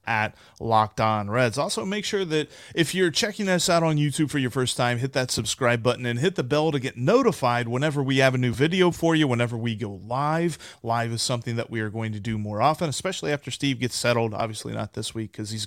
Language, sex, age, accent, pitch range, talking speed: English, male, 30-49, American, 115-160 Hz, 245 wpm